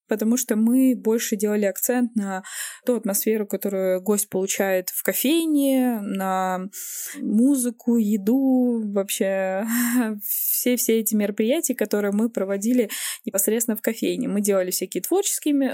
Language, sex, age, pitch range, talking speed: Russian, female, 20-39, 205-255 Hz, 120 wpm